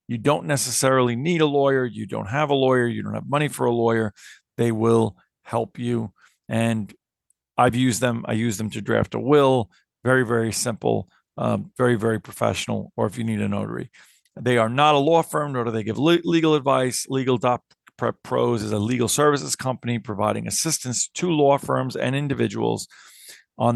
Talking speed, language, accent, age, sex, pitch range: 180 wpm, English, American, 50-69, male, 115-140 Hz